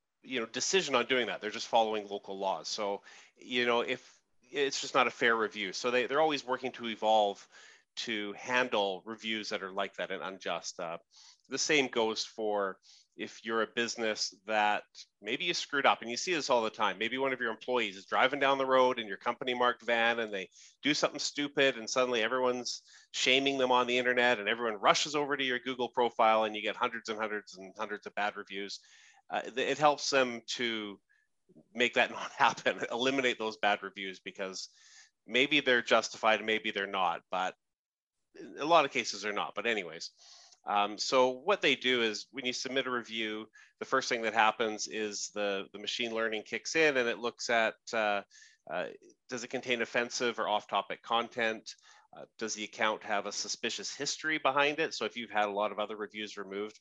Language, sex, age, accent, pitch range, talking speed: English, male, 30-49, American, 105-125 Hz, 200 wpm